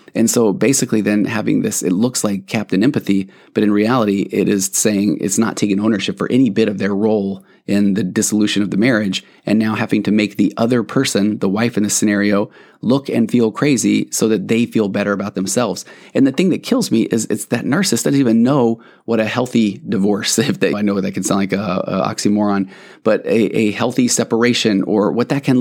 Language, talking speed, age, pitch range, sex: English, 220 wpm, 30-49, 100-120 Hz, male